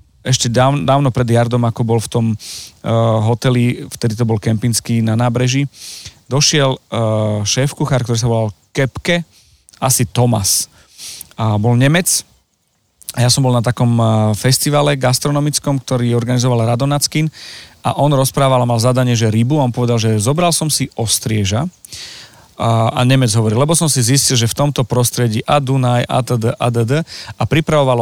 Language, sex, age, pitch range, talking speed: Slovak, male, 40-59, 120-140 Hz, 150 wpm